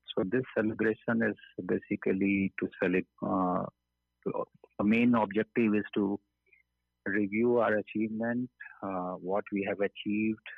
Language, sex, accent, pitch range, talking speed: English, male, Indian, 90-105 Hz, 115 wpm